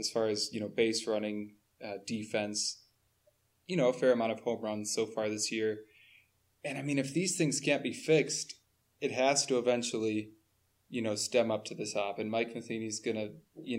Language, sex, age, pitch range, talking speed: English, male, 20-39, 110-120 Hz, 200 wpm